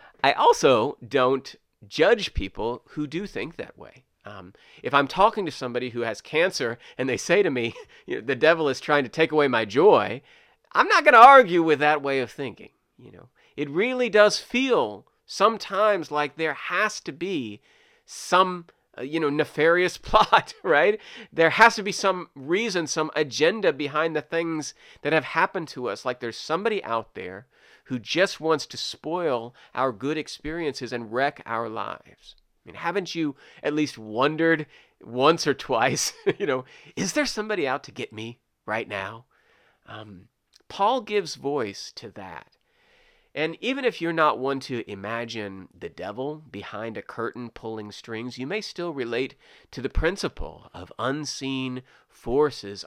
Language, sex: English, male